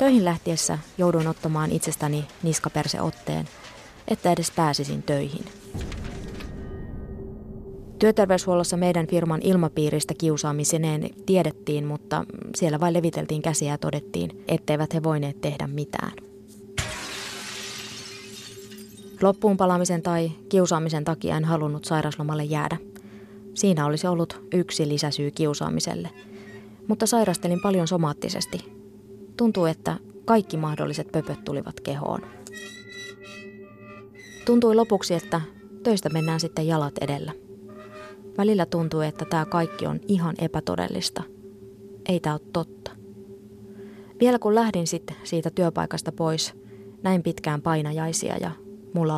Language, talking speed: Finnish, 105 wpm